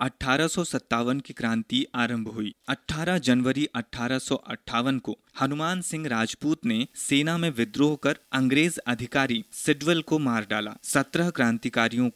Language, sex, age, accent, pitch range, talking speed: Hindi, male, 30-49, native, 115-150 Hz, 125 wpm